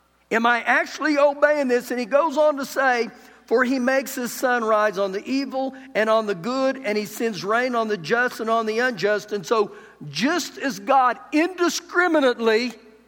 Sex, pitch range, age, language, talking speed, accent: male, 200-275 Hz, 50-69, English, 190 wpm, American